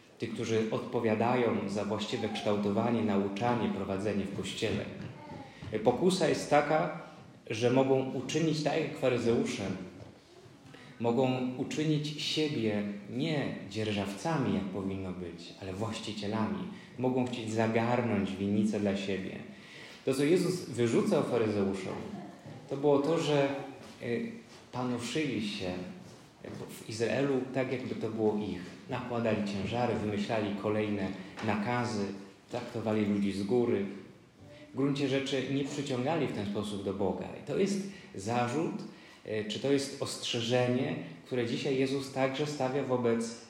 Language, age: Polish, 30-49